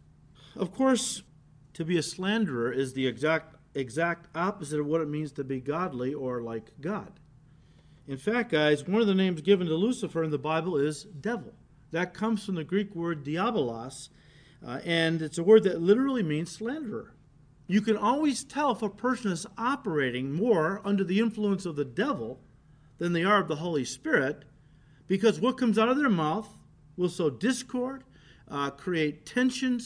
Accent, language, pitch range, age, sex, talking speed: American, English, 150-215 Hz, 50-69, male, 175 wpm